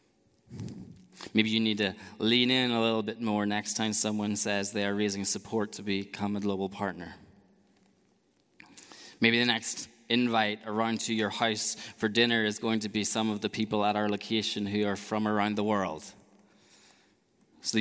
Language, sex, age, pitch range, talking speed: English, male, 20-39, 100-110 Hz, 170 wpm